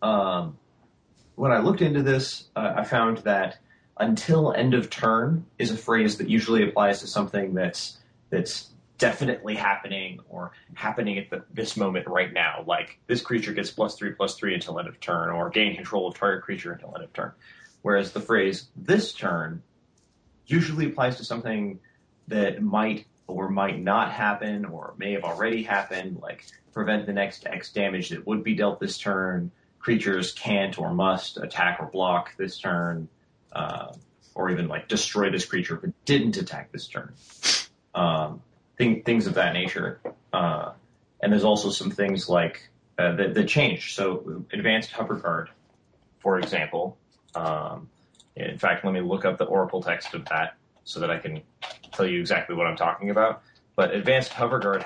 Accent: American